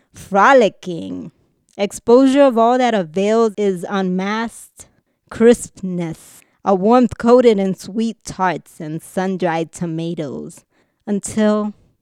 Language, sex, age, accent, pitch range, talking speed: English, female, 20-39, American, 170-210 Hz, 95 wpm